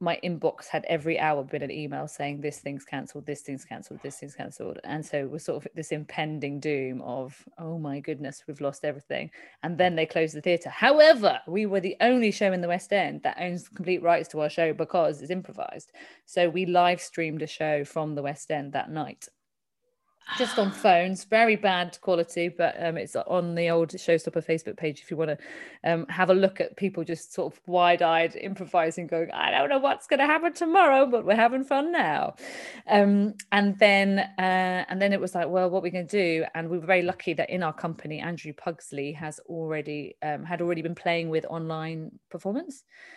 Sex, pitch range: female, 155-185 Hz